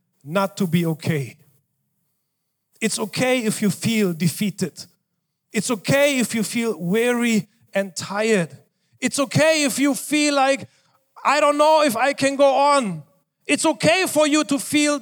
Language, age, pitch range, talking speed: English, 40-59, 195-290 Hz, 150 wpm